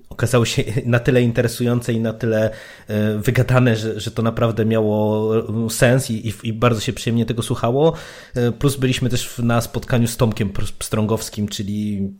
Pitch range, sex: 110-130 Hz, male